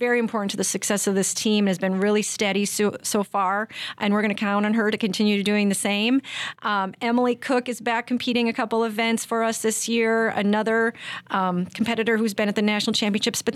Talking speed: 225 wpm